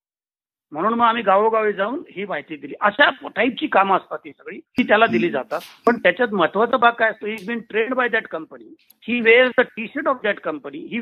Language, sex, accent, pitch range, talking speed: Marathi, male, native, 170-235 Hz, 210 wpm